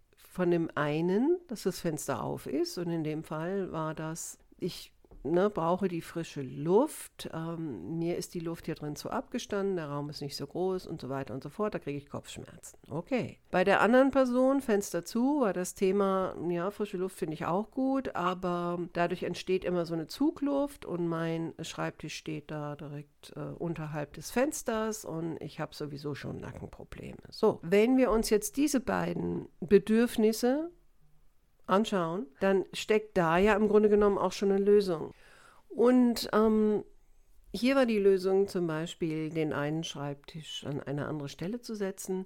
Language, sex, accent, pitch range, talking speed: German, female, German, 155-200 Hz, 175 wpm